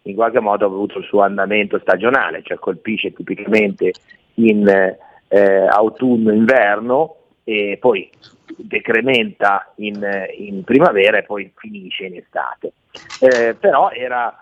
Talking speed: 120 wpm